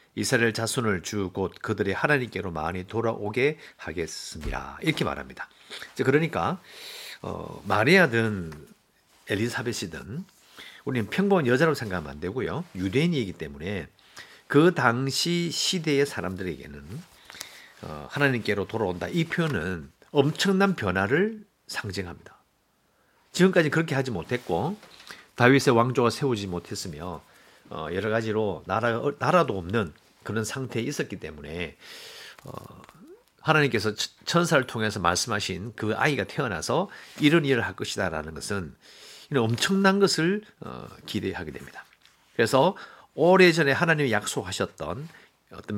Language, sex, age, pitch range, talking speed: English, male, 50-69, 100-165 Hz, 95 wpm